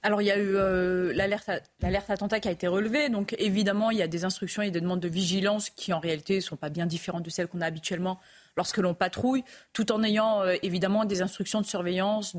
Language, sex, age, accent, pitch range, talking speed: French, female, 30-49, French, 185-215 Hz, 240 wpm